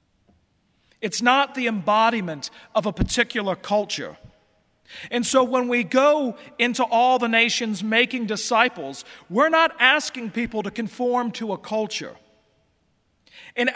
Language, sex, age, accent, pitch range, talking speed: English, male, 40-59, American, 215-265 Hz, 125 wpm